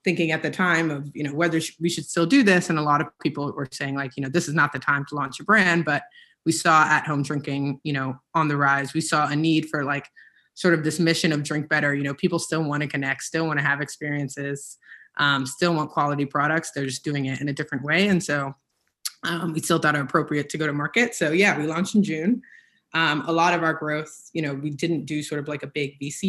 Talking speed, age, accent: 265 wpm, 20-39, American